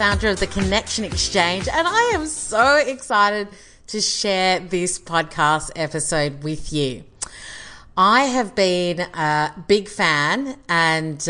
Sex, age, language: female, 30-49, English